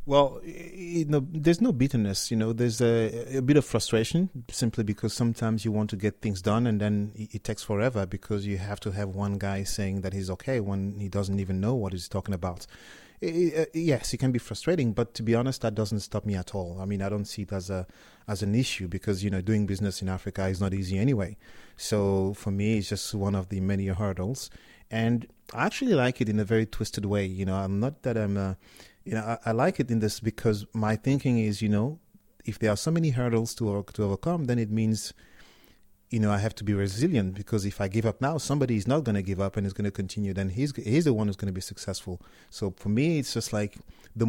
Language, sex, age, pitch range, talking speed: English, male, 30-49, 100-120 Hz, 240 wpm